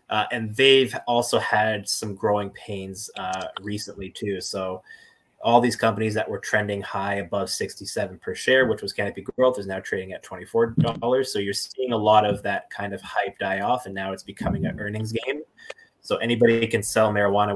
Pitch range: 100-120 Hz